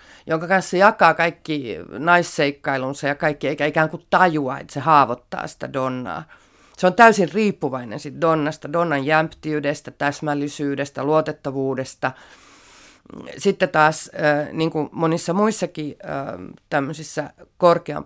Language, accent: Finnish, native